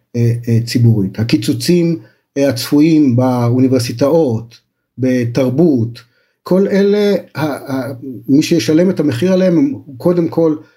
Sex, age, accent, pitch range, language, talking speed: male, 50-69, native, 135-170 Hz, Hebrew, 80 wpm